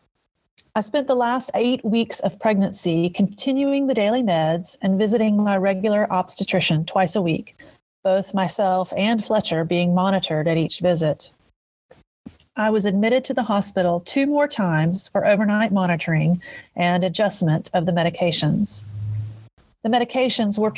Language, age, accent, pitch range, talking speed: English, 40-59, American, 170-220 Hz, 140 wpm